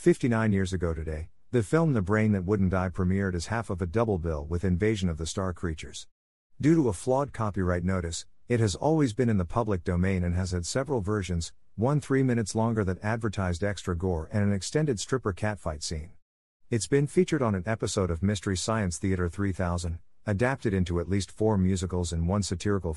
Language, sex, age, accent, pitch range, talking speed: English, male, 50-69, American, 85-115 Hz, 200 wpm